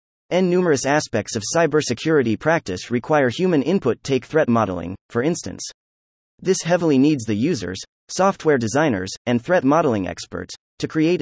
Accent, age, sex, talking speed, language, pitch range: American, 30-49, male, 145 wpm, English, 110-160 Hz